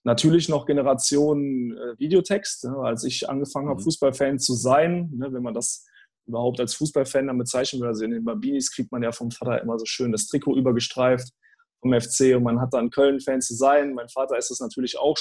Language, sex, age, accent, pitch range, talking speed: German, male, 20-39, German, 120-145 Hz, 195 wpm